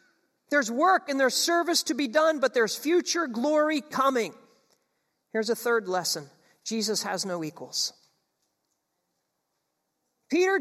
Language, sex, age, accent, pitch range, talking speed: English, male, 40-59, American, 215-310 Hz, 125 wpm